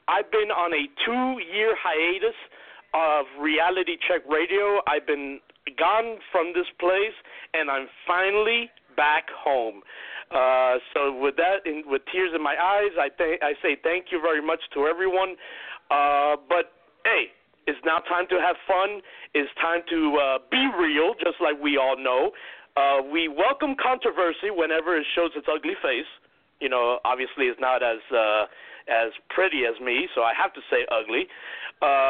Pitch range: 155-260 Hz